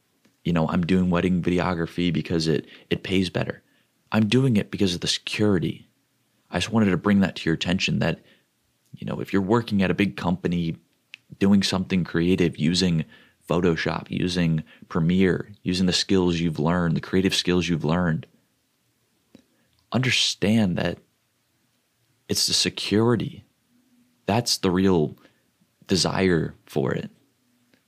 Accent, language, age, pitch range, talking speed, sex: American, English, 30-49, 80-95 Hz, 140 wpm, male